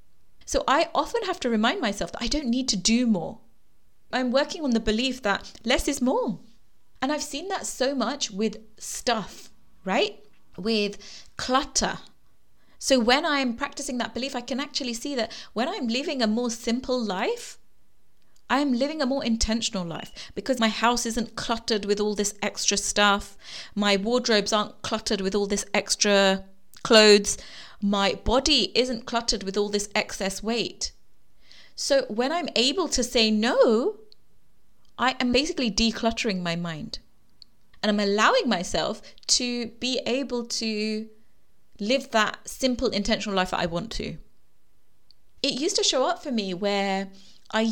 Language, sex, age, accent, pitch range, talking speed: English, female, 30-49, British, 205-255 Hz, 155 wpm